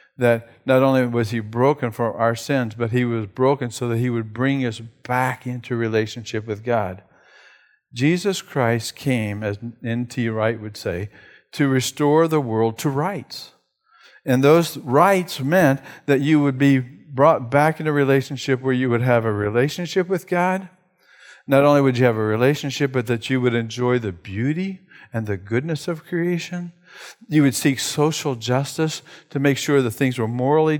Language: English